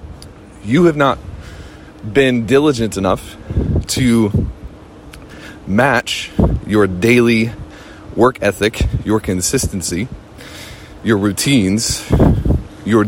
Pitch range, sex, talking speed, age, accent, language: 95-120 Hz, male, 80 wpm, 30-49, American, English